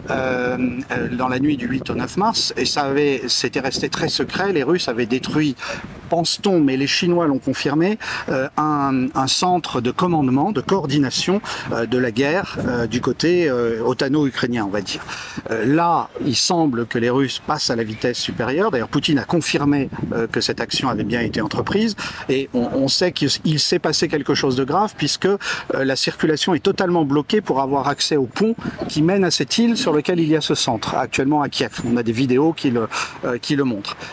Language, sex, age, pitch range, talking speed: French, male, 50-69, 130-180 Hz, 205 wpm